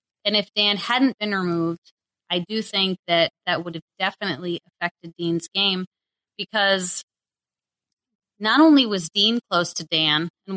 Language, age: English, 30-49